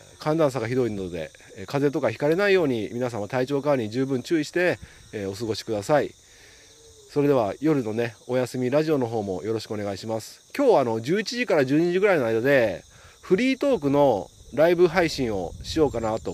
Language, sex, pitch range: Japanese, male, 105-145 Hz